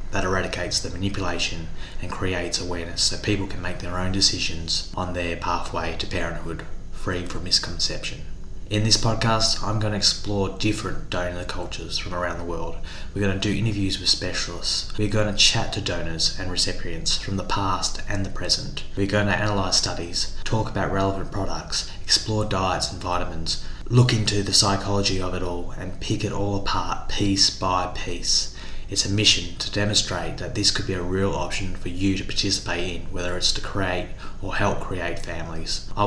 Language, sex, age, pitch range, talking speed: English, male, 20-39, 90-100 Hz, 185 wpm